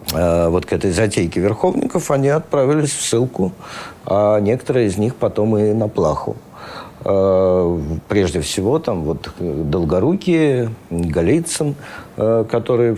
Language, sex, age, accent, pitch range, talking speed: Russian, male, 50-69, native, 100-135 Hz, 110 wpm